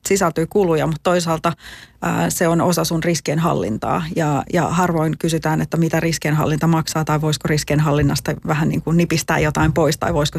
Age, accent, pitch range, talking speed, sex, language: 30-49, native, 150-165 Hz, 155 wpm, female, Finnish